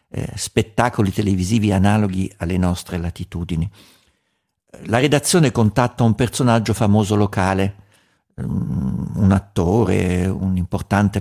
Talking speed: 95 wpm